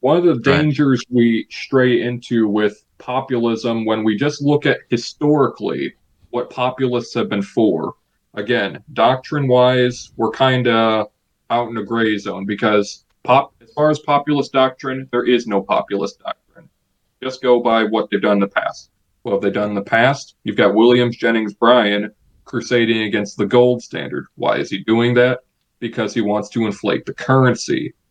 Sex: male